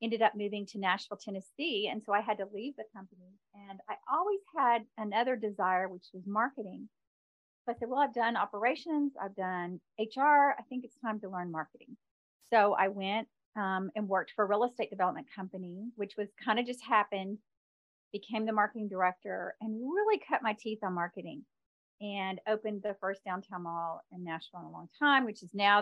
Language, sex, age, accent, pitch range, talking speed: English, female, 40-59, American, 190-230 Hz, 200 wpm